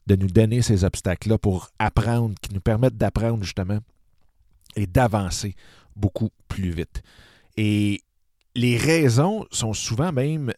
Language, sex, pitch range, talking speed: French, male, 95-115 Hz, 130 wpm